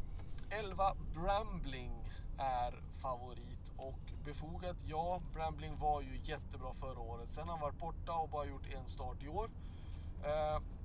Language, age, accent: Swedish, 30-49, native